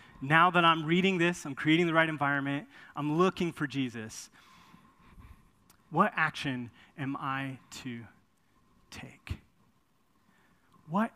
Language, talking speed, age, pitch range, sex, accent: English, 115 wpm, 30-49, 140-210 Hz, male, American